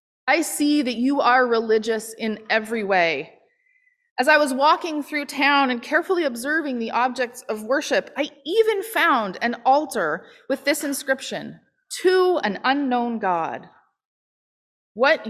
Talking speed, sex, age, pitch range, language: 135 wpm, female, 20-39, 230-300 Hz, English